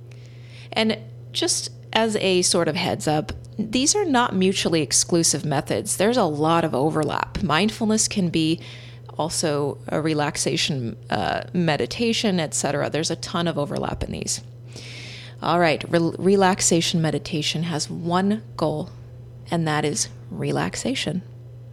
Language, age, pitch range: English, 30-49, 120-180 Hz